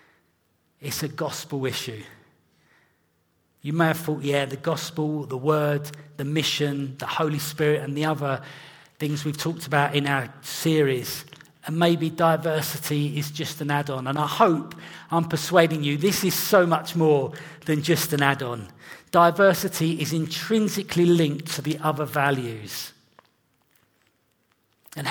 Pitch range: 145-180 Hz